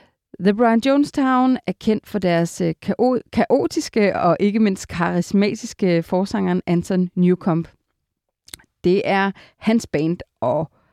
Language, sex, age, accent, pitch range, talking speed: Danish, female, 30-49, native, 175-235 Hz, 110 wpm